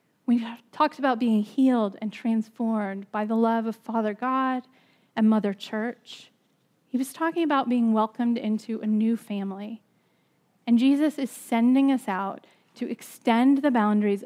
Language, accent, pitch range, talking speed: English, American, 220-270 Hz, 150 wpm